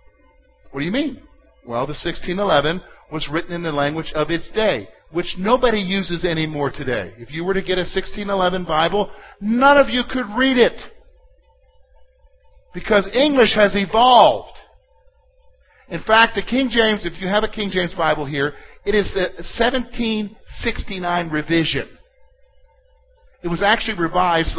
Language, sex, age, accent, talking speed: English, male, 50-69, American, 145 wpm